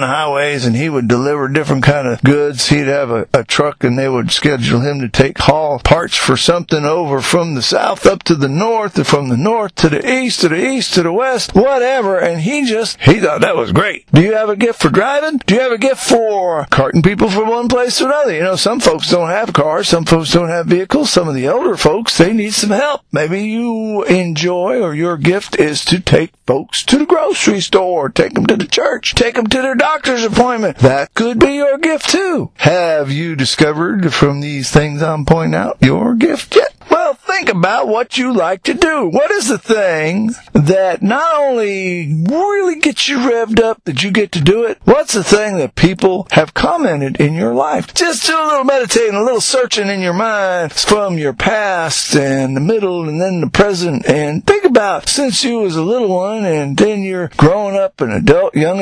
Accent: American